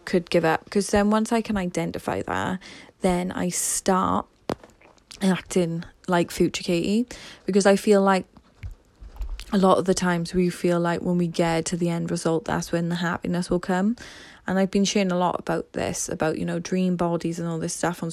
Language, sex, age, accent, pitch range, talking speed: English, female, 10-29, British, 170-190 Hz, 200 wpm